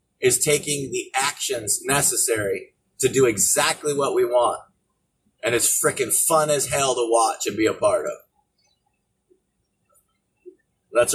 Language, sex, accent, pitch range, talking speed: English, male, American, 160-260 Hz, 135 wpm